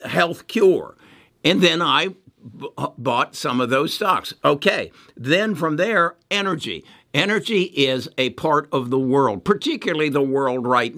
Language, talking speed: English, 140 wpm